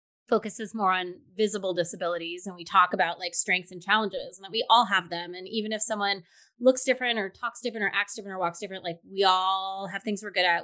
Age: 20-39